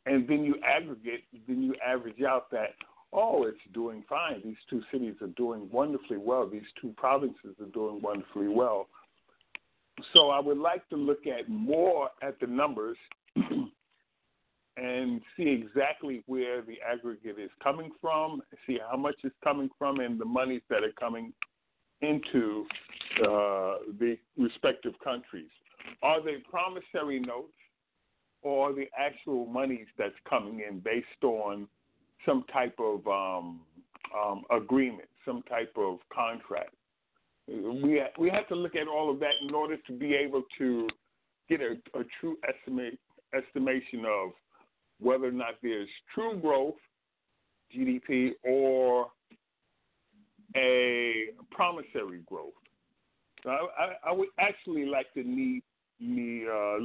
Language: English